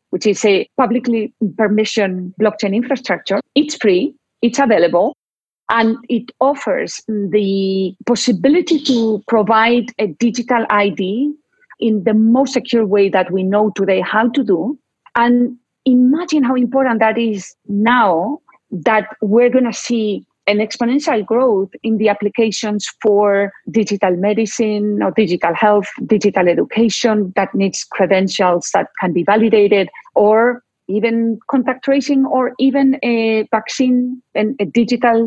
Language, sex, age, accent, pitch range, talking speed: English, female, 40-59, Spanish, 200-240 Hz, 130 wpm